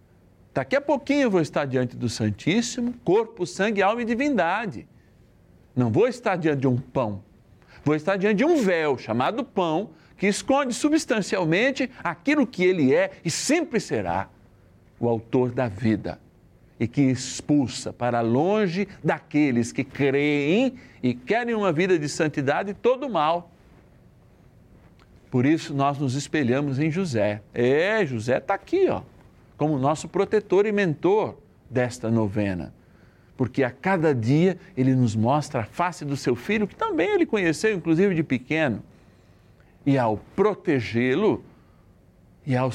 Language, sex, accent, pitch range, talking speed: Portuguese, male, Brazilian, 115-195 Hz, 145 wpm